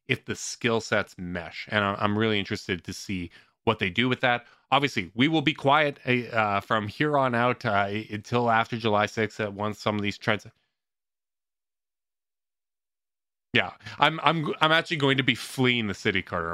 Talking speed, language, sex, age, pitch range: 180 wpm, English, male, 20-39, 95-120 Hz